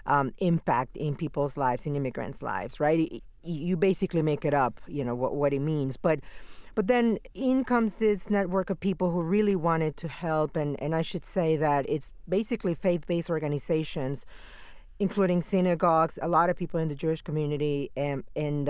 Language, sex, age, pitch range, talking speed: English, female, 40-59, 155-190 Hz, 185 wpm